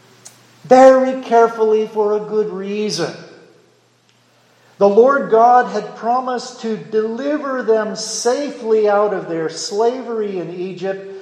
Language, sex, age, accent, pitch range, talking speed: English, male, 50-69, American, 180-240 Hz, 110 wpm